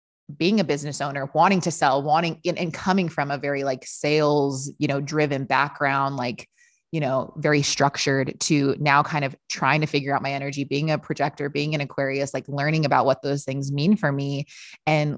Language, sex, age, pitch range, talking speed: English, female, 20-39, 140-170 Hz, 200 wpm